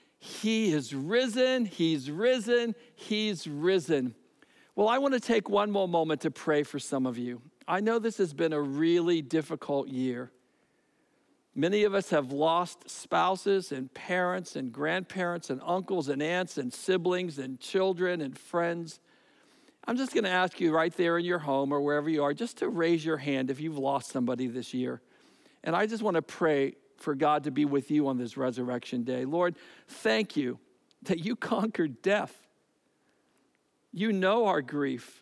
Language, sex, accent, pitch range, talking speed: English, male, American, 145-210 Hz, 175 wpm